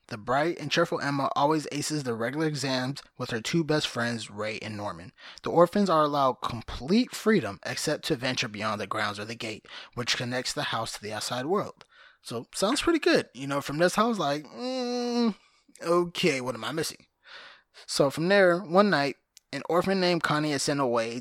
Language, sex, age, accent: English, male, 20-39, American